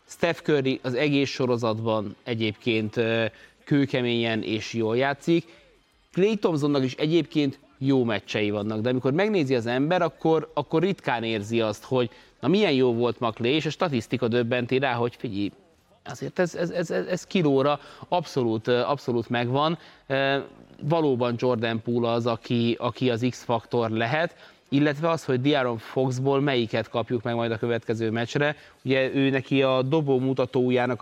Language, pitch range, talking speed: Hungarian, 120-150 Hz, 150 wpm